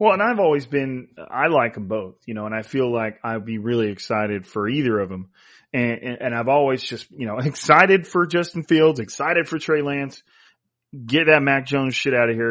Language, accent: English, American